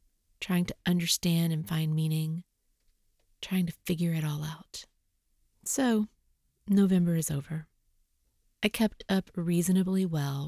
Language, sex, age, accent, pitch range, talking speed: English, female, 30-49, American, 160-205 Hz, 120 wpm